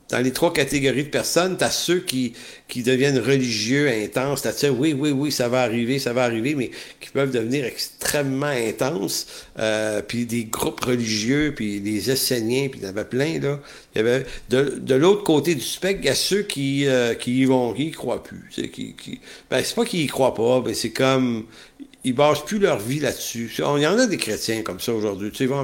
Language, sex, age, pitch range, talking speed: English, male, 60-79, 115-145 Hz, 220 wpm